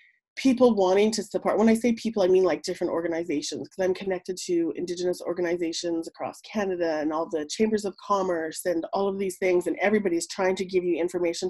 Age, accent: 30-49, American